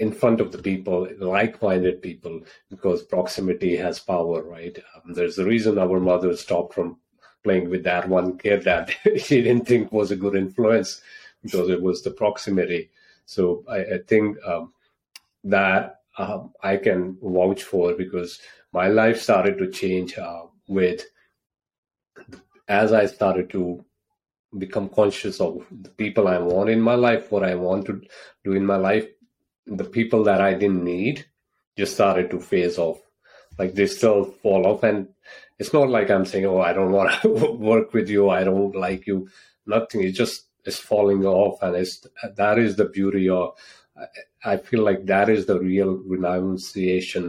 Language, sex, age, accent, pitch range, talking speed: English, male, 30-49, Indian, 90-110 Hz, 170 wpm